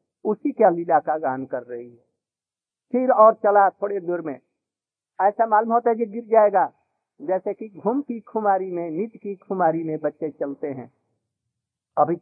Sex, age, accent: male, 50-69, native